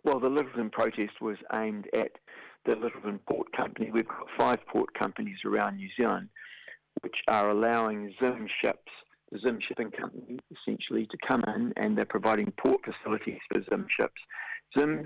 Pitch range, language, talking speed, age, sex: 105-140 Hz, English, 160 wpm, 50-69, male